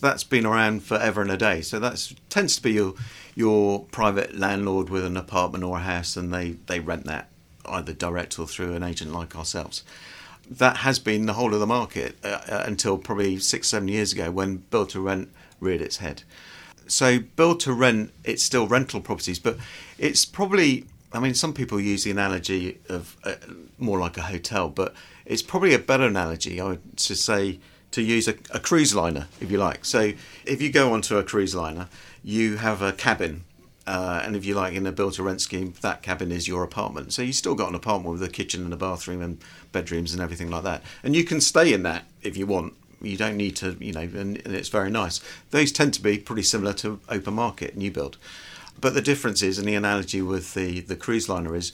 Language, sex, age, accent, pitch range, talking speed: English, male, 40-59, British, 90-110 Hz, 215 wpm